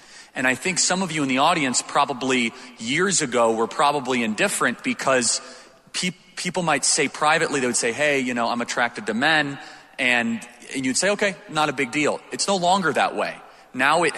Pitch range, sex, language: 130-180 Hz, male, English